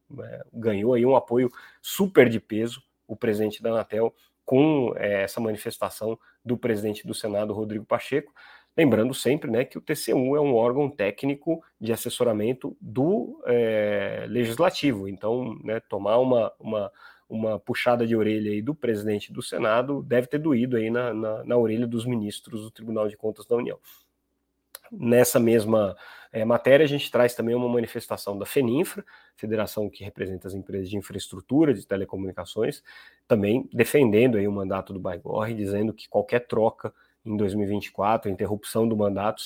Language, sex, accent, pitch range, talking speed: Portuguese, male, Brazilian, 105-120 Hz, 150 wpm